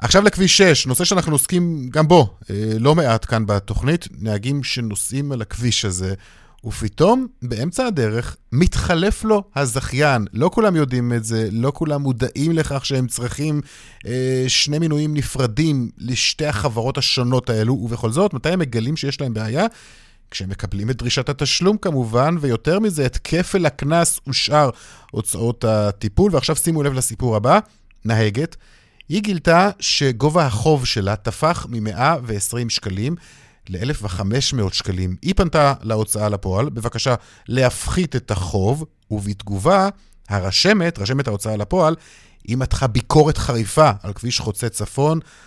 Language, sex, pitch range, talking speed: Hebrew, male, 110-150 Hz, 135 wpm